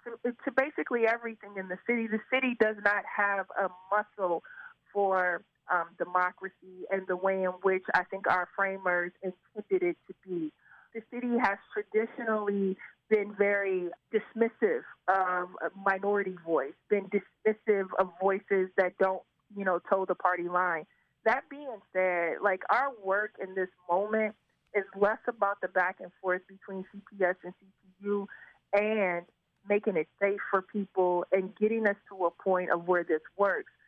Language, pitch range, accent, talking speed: English, 185-220 Hz, American, 155 wpm